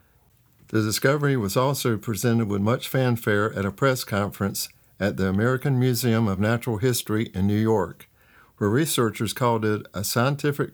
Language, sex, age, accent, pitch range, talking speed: English, male, 50-69, American, 100-125 Hz, 155 wpm